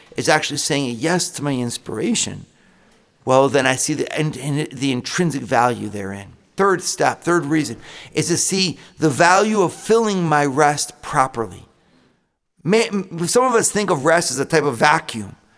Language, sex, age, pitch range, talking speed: English, male, 50-69, 145-190 Hz, 175 wpm